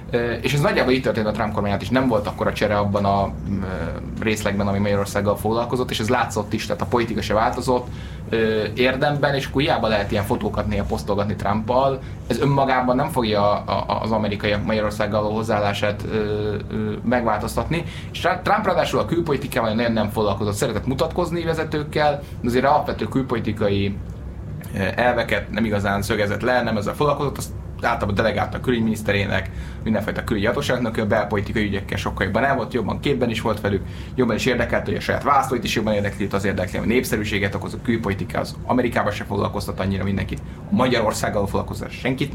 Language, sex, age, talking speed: Hungarian, male, 20-39, 165 wpm